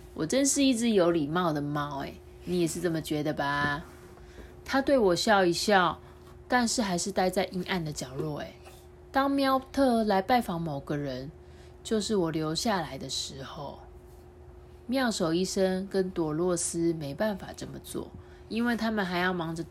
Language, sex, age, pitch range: Chinese, female, 30-49, 160-215 Hz